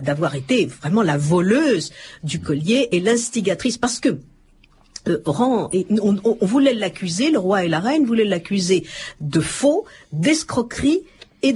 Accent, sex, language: French, female, French